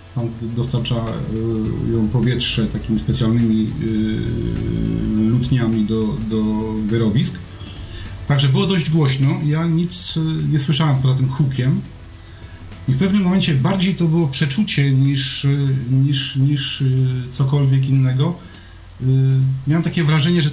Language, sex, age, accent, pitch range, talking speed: Polish, male, 40-59, native, 120-150 Hz, 110 wpm